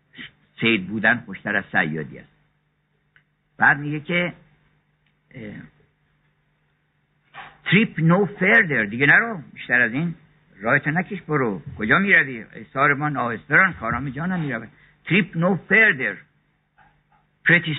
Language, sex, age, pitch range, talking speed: Persian, male, 60-79, 120-165 Hz, 120 wpm